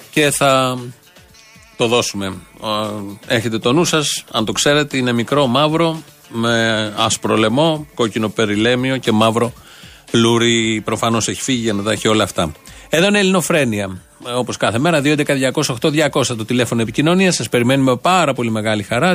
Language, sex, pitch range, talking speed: Greek, male, 110-150 Hz, 150 wpm